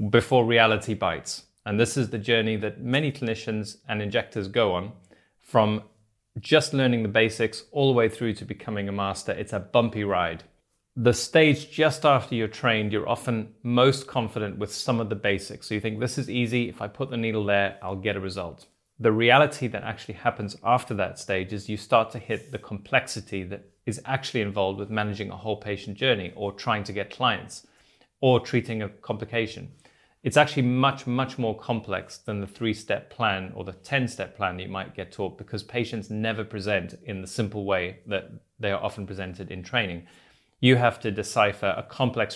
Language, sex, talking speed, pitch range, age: English, male, 195 wpm, 100-120 Hz, 30-49